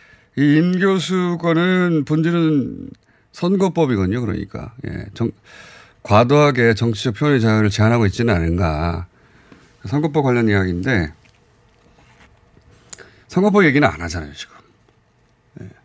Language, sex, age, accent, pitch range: Korean, male, 30-49, native, 95-150 Hz